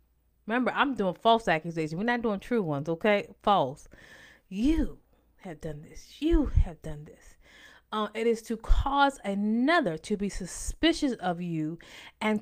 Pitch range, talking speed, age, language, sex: 180-255 Hz, 155 wpm, 20-39, English, female